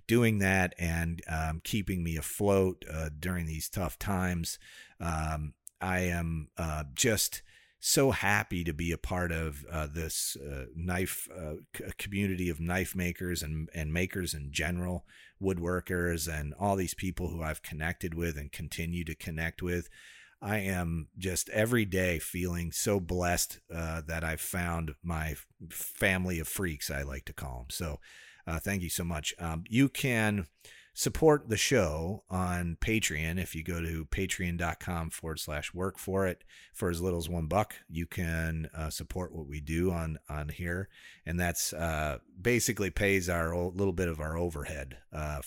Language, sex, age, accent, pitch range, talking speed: English, male, 40-59, American, 80-95 Hz, 165 wpm